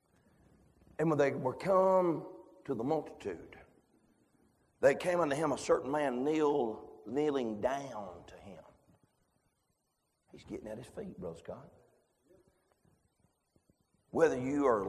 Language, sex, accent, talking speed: English, male, American, 120 wpm